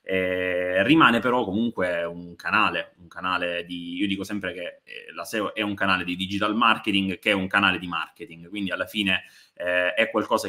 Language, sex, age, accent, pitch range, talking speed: Italian, male, 20-39, native, 90-110 Hz, 190 wpm